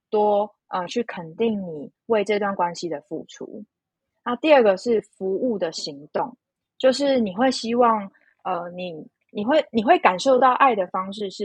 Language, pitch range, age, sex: Chinese, 175-235 Hz, 20-39, female